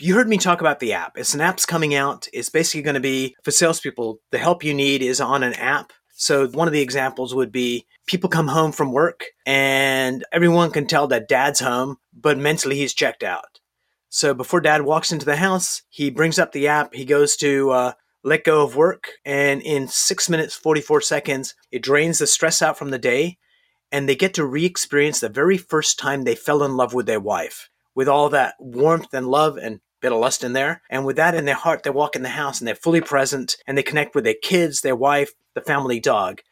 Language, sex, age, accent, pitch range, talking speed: English, male, 30-49, American, 135-165 Hz, 230 wpm